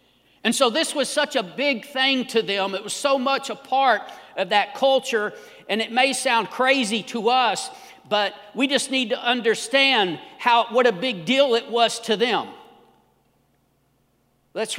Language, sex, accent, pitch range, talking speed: English, male, American, 205-265 Hz, 170 wpm